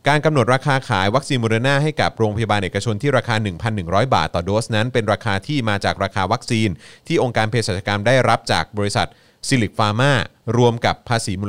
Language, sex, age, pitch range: Thai, male, 30-49, 100-135 Hz